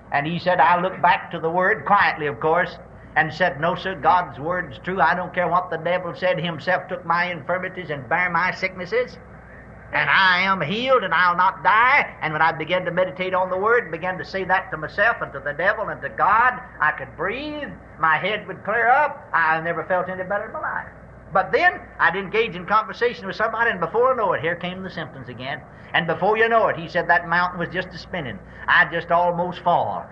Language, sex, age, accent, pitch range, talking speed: English, male, 60-79, American, 165-190 Hz, 230 wpm